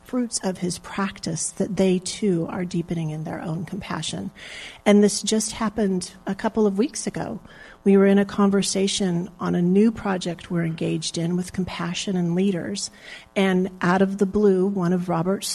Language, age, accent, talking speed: English, 40-59, American, 180 wpm